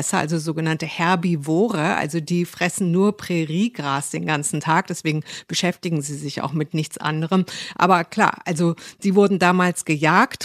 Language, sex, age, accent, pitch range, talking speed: German, female, 50-69, German, 155-185 Hz, 150 wpm